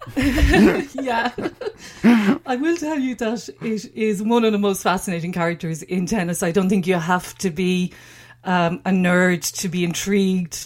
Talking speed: 165 wpm